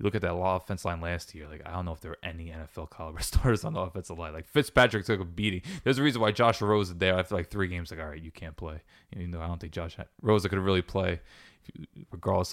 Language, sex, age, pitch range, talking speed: English, male, 20-39, 90-110 Hz, 285 wpm